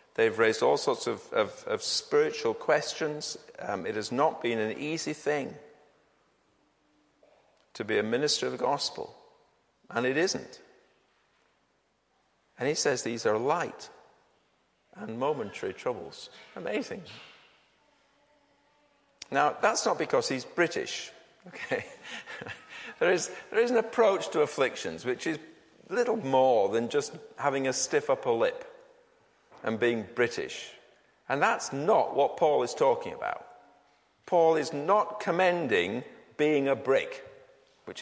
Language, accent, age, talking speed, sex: English, British, 50-69, 130 wpm, male